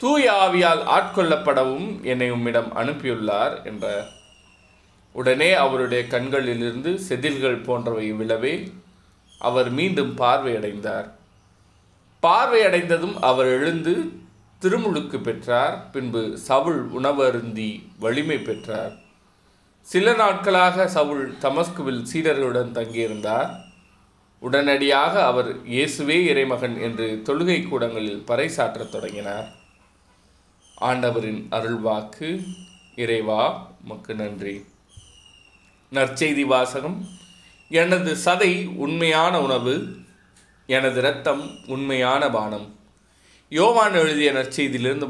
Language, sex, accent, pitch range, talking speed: Tamil, male, native, 110-155 Hz, 75 wpm